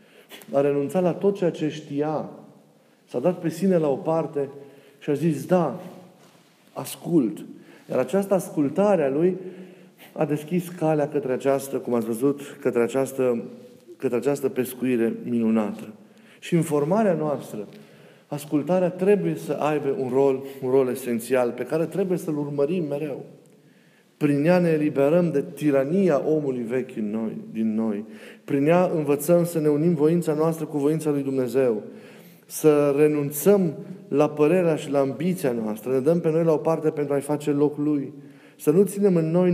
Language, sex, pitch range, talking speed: Romanian, male, 135-165 Hz, 160 wpm